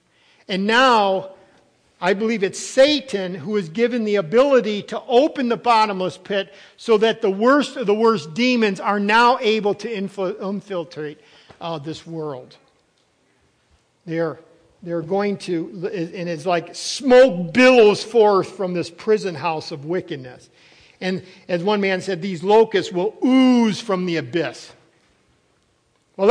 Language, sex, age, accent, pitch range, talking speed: English, male, 50-69, American, 180-225 Hz, 140 wpm